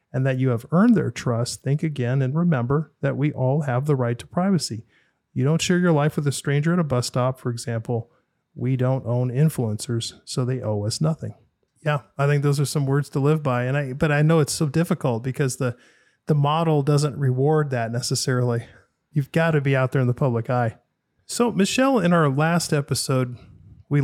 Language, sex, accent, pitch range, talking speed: English, male, American, 120-145 Hz, 210 wpm